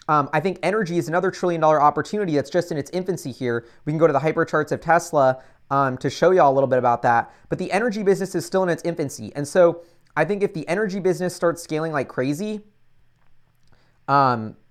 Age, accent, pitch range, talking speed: 30-49, American, 140-180 Hz, 225 wpm